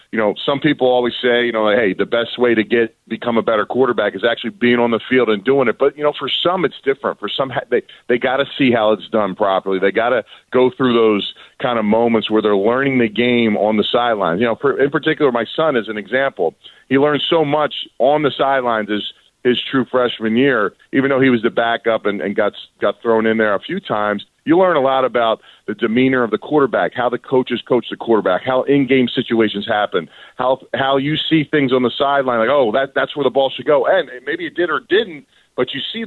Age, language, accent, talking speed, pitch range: 40-59, English, American, 245 wpm, 110-135 Hz